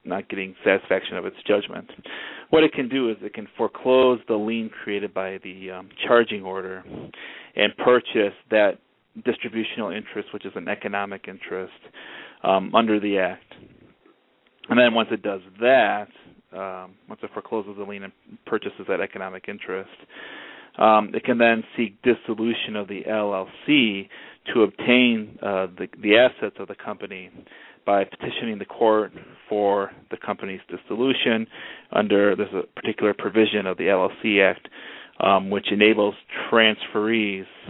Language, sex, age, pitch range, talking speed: English, male, 30-49, 95-115 Hz, 145 wpm